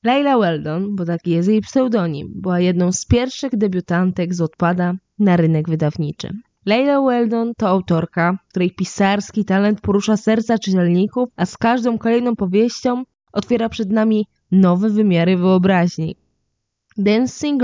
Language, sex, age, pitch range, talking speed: Polish, female, 20-39, 175-225 Hz, 135 wpm